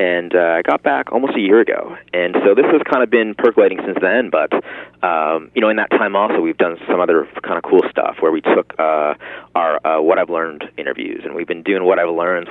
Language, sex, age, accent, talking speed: English, male, 30-49, American, 250 wpm